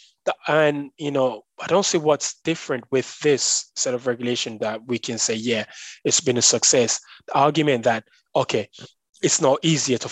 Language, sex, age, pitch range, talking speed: English, male, 20-39, 120-165 Hz, 180 wpm